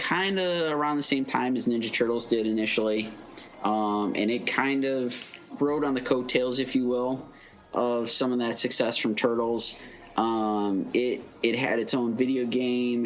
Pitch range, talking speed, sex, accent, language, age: 105-125 Hz, 175 wpm, male, American, English, 20-39